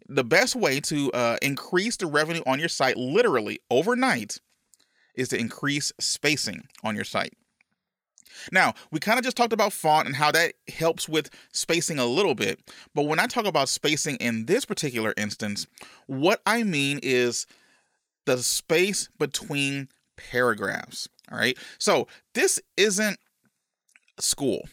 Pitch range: 125-175 Hz